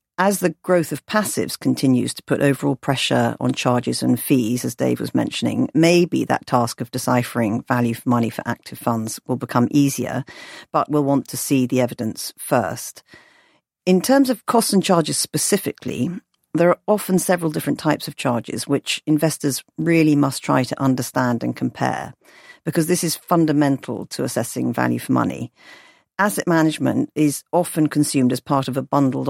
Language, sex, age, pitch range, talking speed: English, female, 50-69, 125-155 Hz, 170 wpm